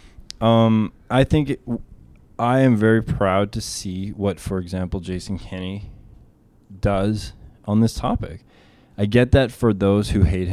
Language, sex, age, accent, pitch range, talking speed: English, male, 20-39, American, 95-110 Hz, 145 wpm